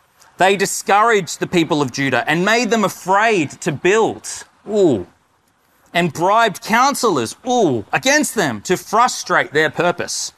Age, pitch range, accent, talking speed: 30-49, 145-195 Hz, Australian, 125 wpm